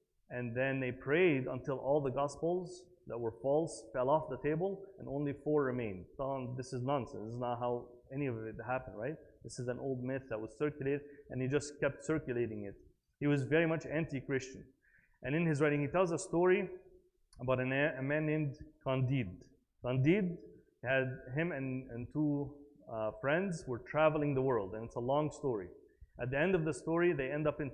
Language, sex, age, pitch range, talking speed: English, male, 30-49, 125-160 Hz, 195 wpm